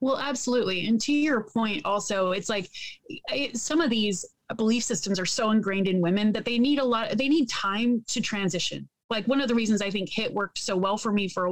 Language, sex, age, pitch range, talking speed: English, female, 30-49, 190-235 Hz, 235 wpm